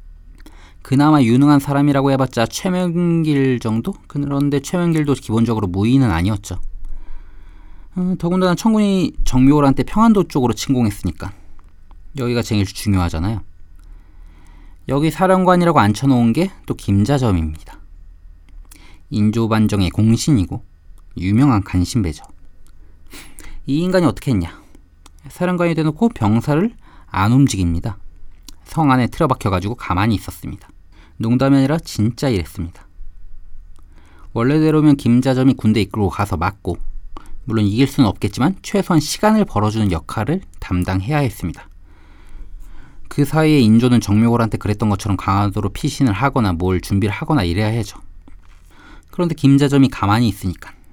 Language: Korean